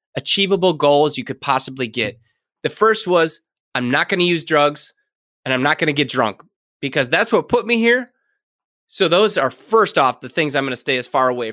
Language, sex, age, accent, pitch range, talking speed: English, male, 20-39, American, 140-195 Hz, 220 wpm